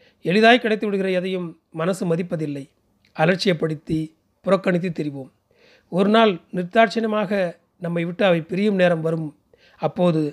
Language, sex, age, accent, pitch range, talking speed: Tamil, male, 30-49, native, 165-200 Hz, 95 wpm